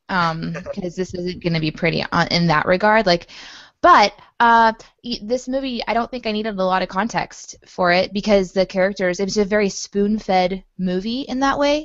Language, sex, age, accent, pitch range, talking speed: English, female, 20-39, American, 170-205 Hz, 190 wpm